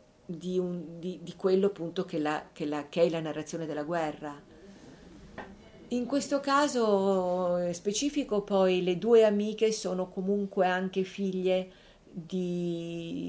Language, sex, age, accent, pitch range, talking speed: Italian, female, 50-69, native, 160-185 Hz, 130 wpm